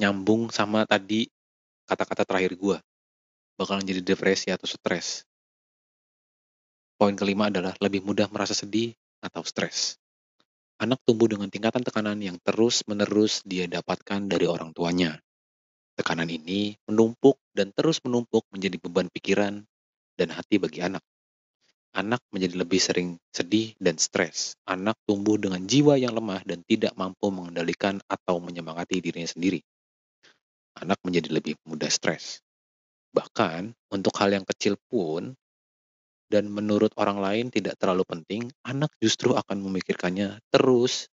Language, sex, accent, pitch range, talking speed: Indonesian, male, native, 85-105 Hz, 130 wpm